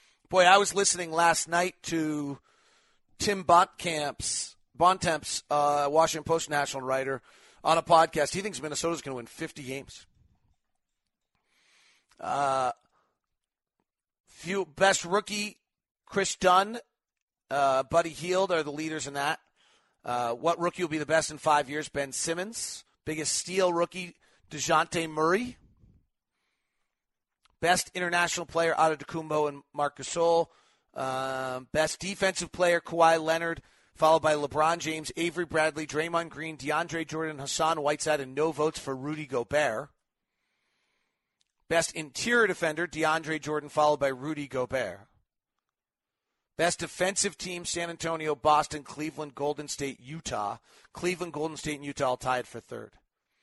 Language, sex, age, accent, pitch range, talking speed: English, male, 40-59, American, 135-170 Hz, 130 wpm